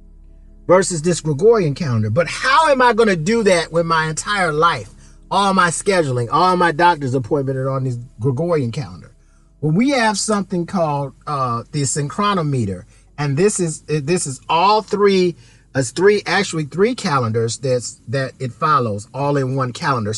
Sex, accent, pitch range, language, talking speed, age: male, American, 130-185 Hz, English, 165 wpm, 40-59